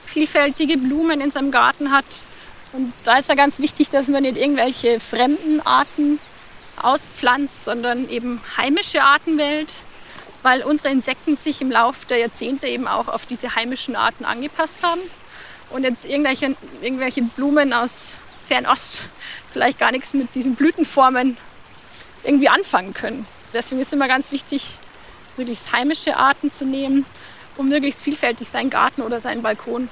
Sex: female